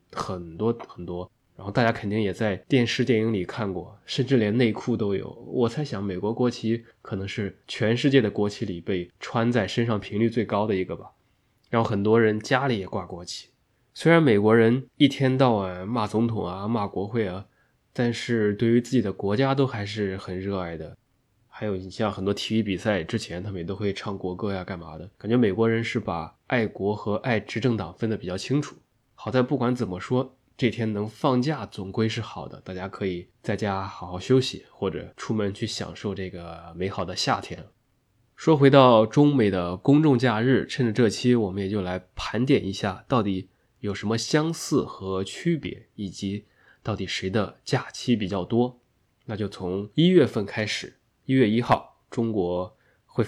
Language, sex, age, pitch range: Chinese, male, 20-39, 95-120 Hz